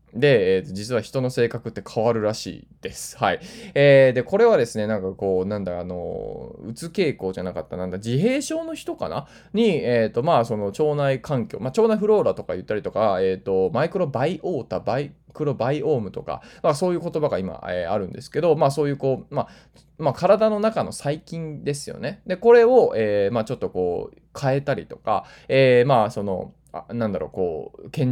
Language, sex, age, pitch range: Japanese, male, 20-39, 110-165 Hz